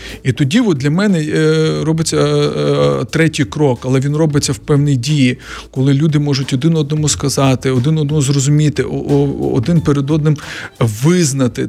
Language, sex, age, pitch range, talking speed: Ukrainian, male, 40-59, 135-155 Hz, 140 wpm